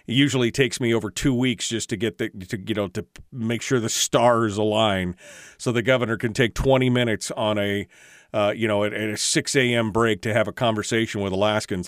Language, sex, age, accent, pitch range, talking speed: English, male, 40-59, American, 110-140 Hz, 225 wpm